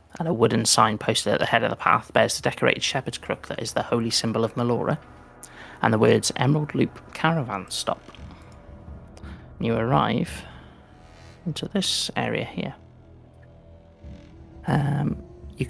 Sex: male